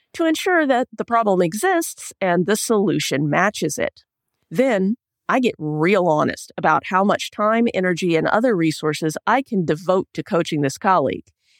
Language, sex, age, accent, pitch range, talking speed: English, female, 40-59, American, 170-280 Hz, 160 wpm